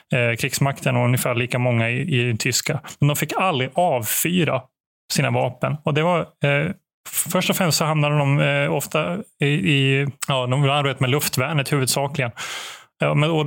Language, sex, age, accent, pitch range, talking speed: Swedish, male, 20-39, native, 130-155 Hz, 155 wpm